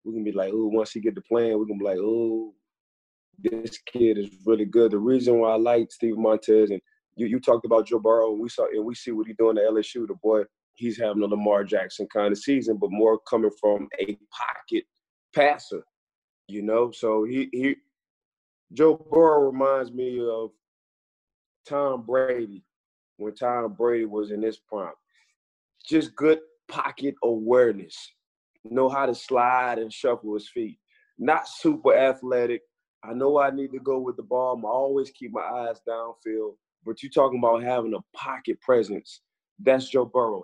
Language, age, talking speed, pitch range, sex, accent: English, 20-39, 180 wpm, 110-135 Hz, male, American